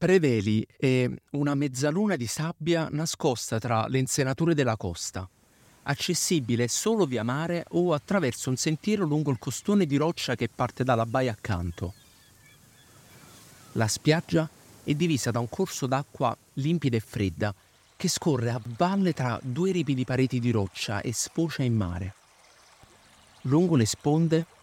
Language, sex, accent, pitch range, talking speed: Italian, male, native, 110-155 Hz, 140 wpm